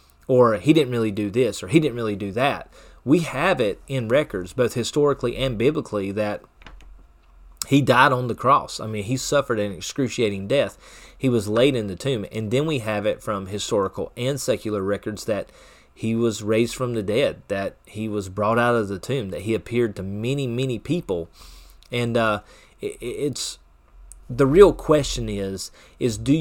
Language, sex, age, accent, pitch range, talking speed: English, male, 30-49, American, 100-130 Hz, 185 wpm